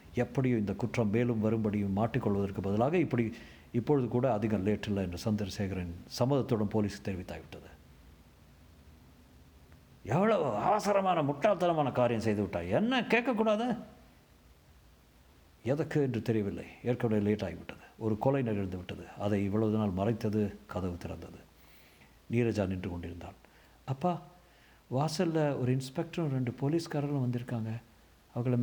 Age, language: 50-69, Tamil